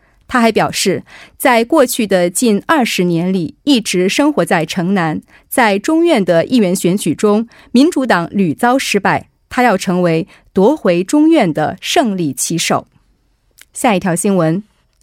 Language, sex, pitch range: Korean, female, 175-260 Hz